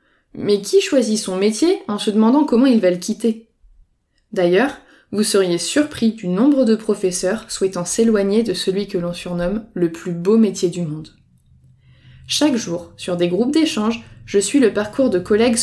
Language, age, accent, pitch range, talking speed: French, 20-39, French, 185-235 Hz, 175 wpm